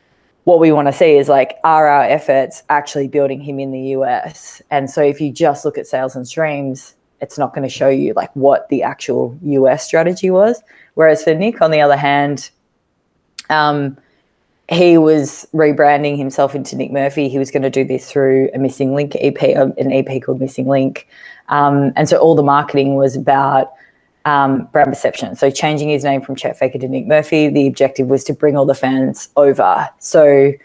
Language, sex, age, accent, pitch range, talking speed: English, female, 20-39, Australian, 135-150 Hz, 200 wpm